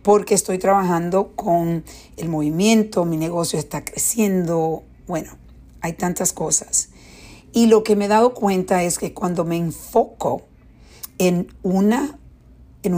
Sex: female